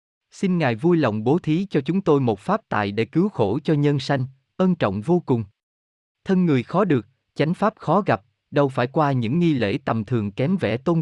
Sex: male